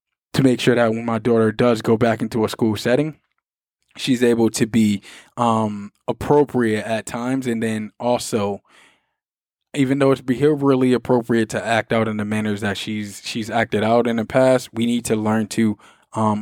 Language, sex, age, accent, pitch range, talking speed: English, male, 20-39, American, 110-130 Hz, 185 wpm